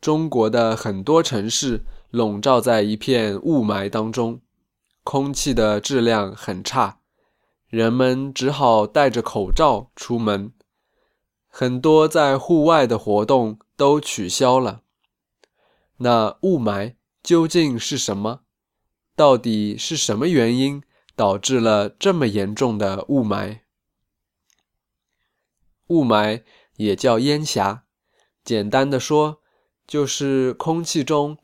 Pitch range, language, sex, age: 105-140 Hz, Chinese, male, 20-39